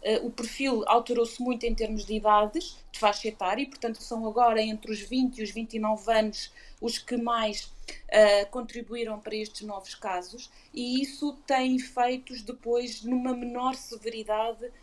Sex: female